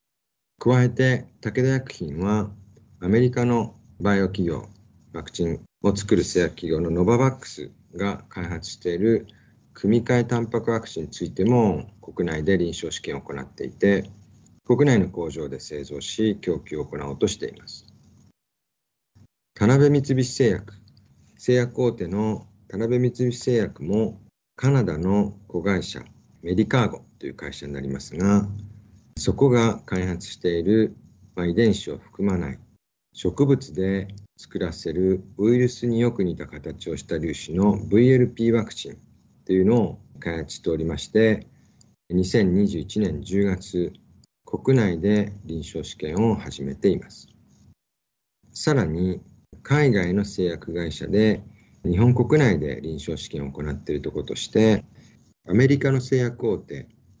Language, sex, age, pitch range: Japanese, male, 50-69, 90-120 Hz